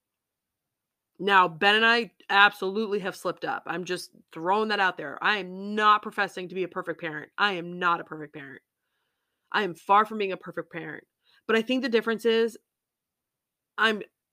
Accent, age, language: American, 30-49, English